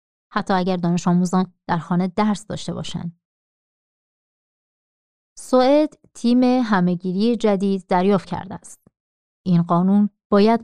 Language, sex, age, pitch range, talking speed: Persian, female, 30-49, 170-215 Hz, 105 wpm